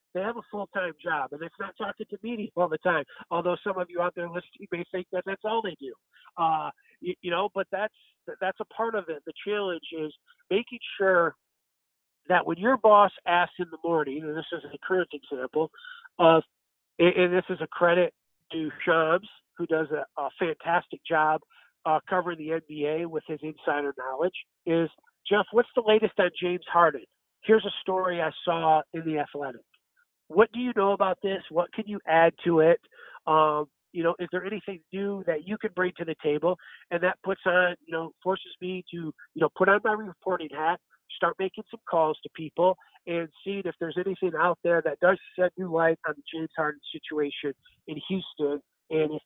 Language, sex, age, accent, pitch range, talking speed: English, male, 50-69, American, 155-190 Hz, 200 wpm